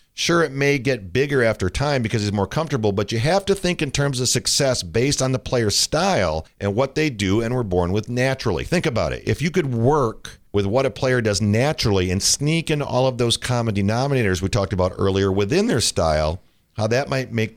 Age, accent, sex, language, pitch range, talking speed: 50-69, American, male, English, 100-135 Hz, 225 wpm